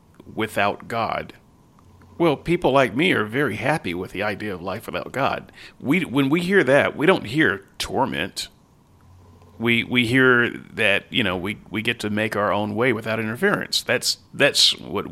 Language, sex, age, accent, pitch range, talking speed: English, male, 40-59, American, 110-150 Hz, 175 wpm